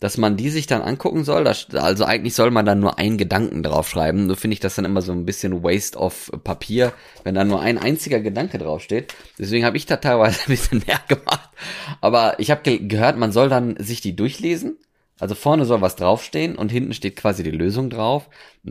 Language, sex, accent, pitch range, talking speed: German, male, German, 100-135 Hz, 220 wpm